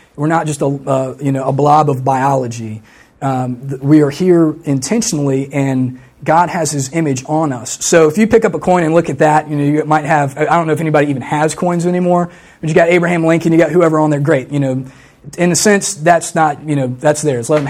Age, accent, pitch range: 30-49, American, 135-160 Hz